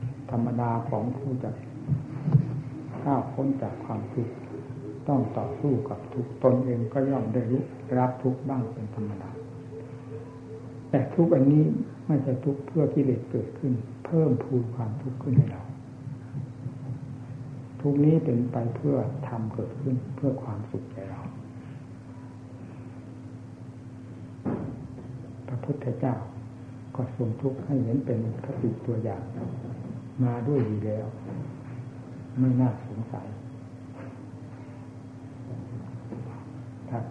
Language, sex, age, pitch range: Thai, male, 60-79, 120-135 Hz